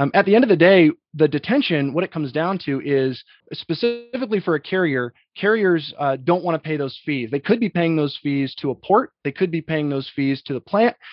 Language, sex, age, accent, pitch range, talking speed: English, male, 20-39, American, 140-175 Hz, 230 wpm